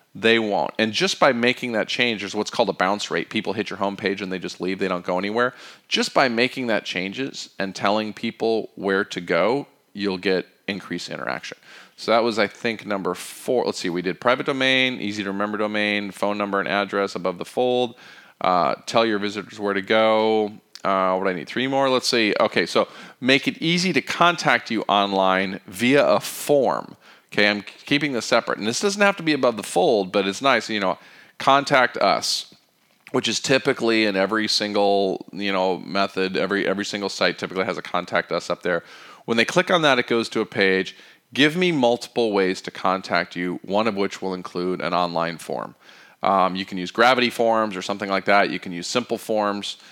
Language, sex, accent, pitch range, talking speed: English, male, American, 95-115 Hz, 210 wpm